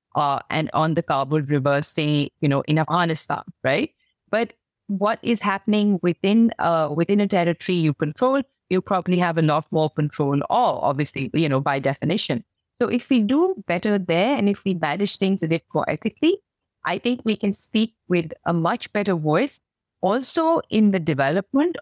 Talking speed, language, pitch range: 180 wpm, English, 155-210 Hz